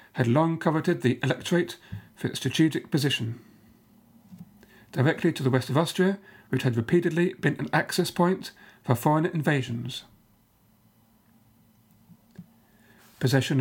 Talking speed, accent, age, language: 115 wpm, British, 40-59, English